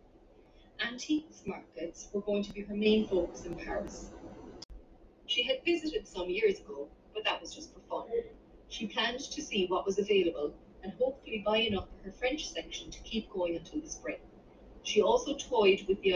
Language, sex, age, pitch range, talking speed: English, female, 30-49, 185-250 Hz, 180 wpm